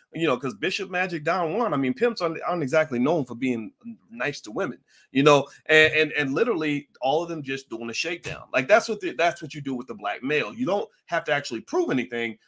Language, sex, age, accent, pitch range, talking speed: English, male, 30-49, American, 125-165 Hz, 245 wpm